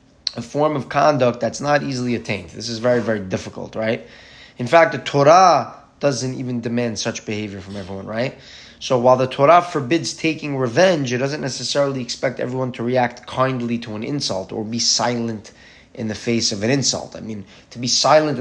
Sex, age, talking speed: male, 20-39, 190 wpm